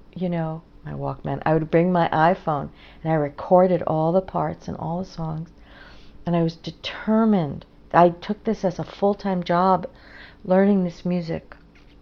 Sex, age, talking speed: female, 50-69, 170 wpm